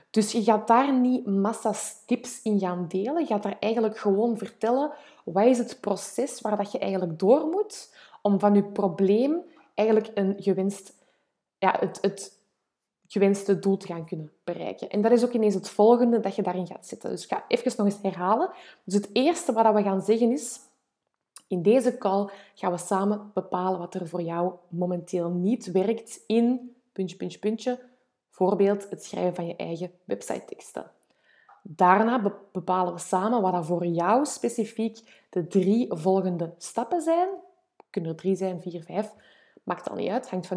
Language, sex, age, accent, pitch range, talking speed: Dutch, female, 20-39, Belgian, 190-240 Hz, 180 wpm